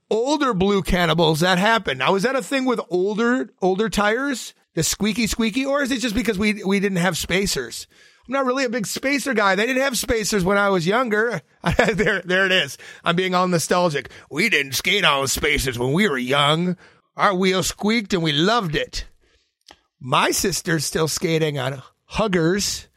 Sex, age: male, 30-49